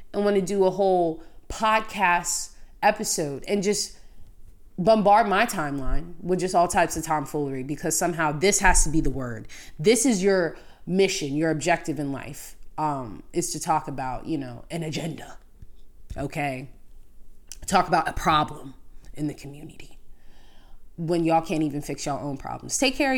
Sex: female